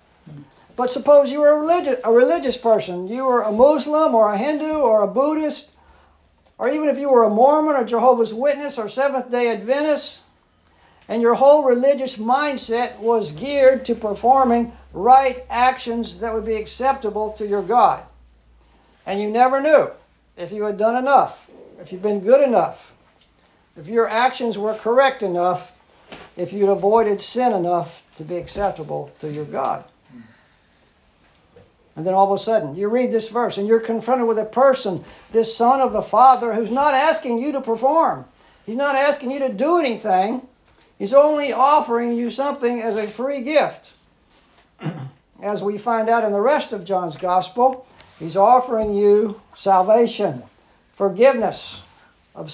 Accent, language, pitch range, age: American, English, 195-260 Hz, 60-79